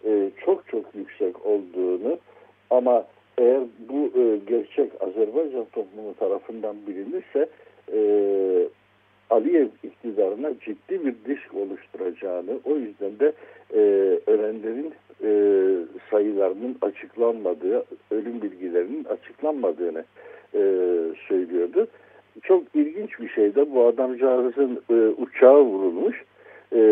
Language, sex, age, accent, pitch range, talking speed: Turkish, male, 60-79, native, 290-435 Hz, 100 wpm